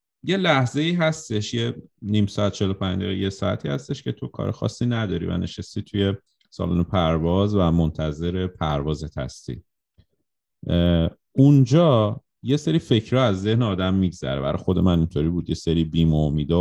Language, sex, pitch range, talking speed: Persian, male, 80-100 Hz, 150 wpm